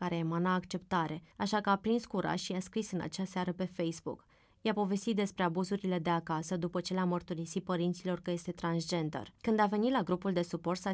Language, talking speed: Romanian, 210 wpm